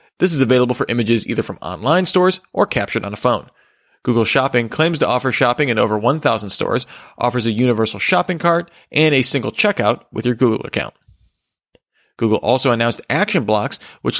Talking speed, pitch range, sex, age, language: 180 wpm, 115-155 Hz, male, 30-49, English